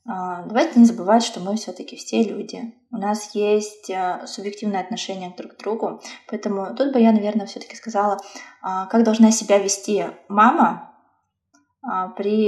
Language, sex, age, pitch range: Russian, female, 20-39, 195-230 Hz